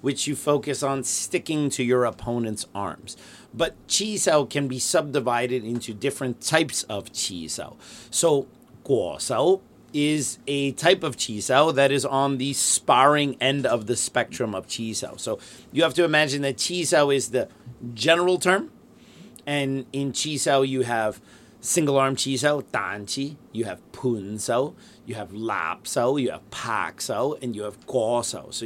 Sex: male